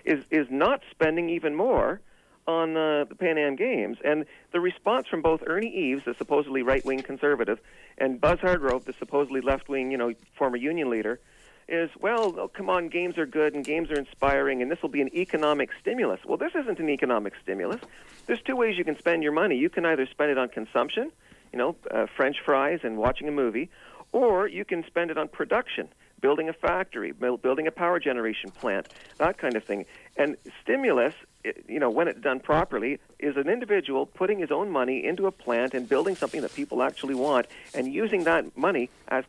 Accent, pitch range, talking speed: American, 135-175 Hz, 200 wpm